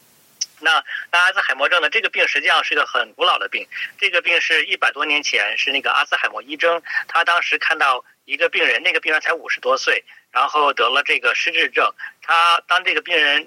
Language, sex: Chinese, male